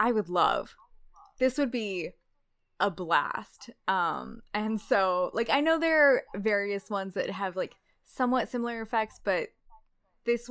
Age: 20-39